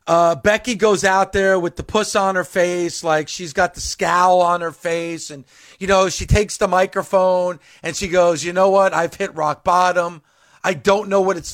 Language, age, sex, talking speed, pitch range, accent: English, 40-59, male, 215 wpm, 175-220 Hz, American